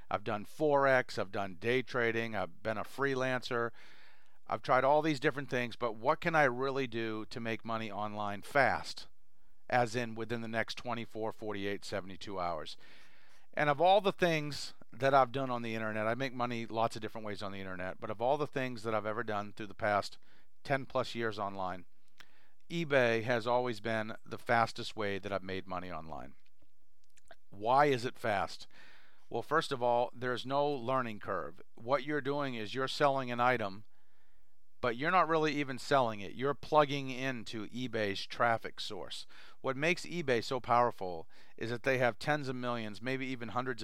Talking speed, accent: 185 wpm, American